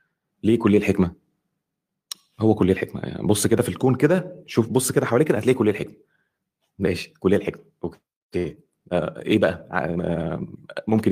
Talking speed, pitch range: 160 wpm, 95-125 Hz